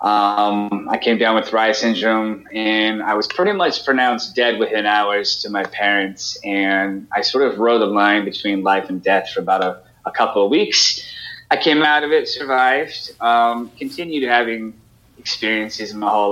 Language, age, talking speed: English, 20-39, 185 wpm